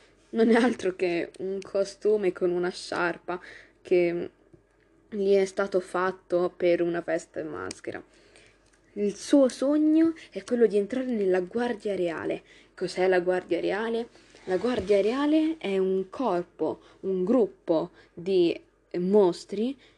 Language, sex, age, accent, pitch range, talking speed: Italian, female, 20-39, native, 175-250 Hz, 130 wpm